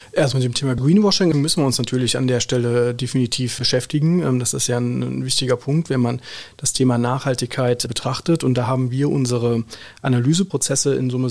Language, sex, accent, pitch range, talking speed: German, male, German, 125-155 Hz, 180 wpm